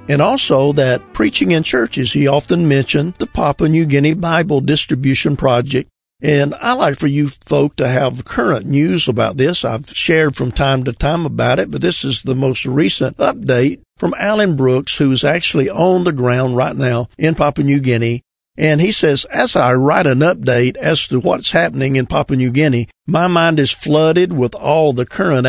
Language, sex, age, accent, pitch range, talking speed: English, male, 50-69, American, 130-160 Hz, 190 wpm